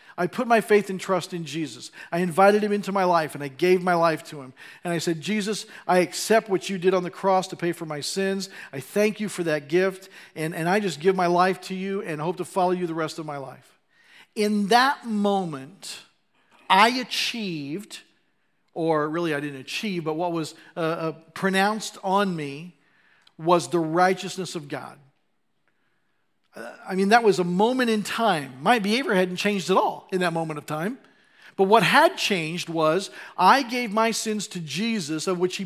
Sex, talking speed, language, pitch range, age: male, 200 wpm, English, 170-210 Hz, 40-59